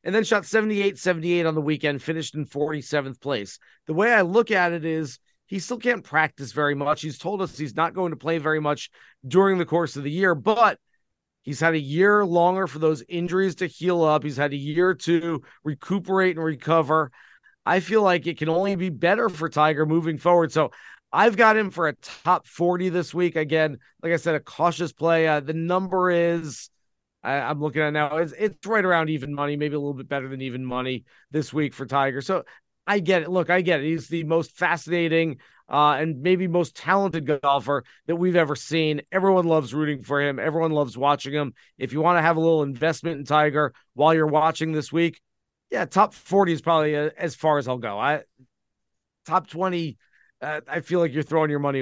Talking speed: 215 wpm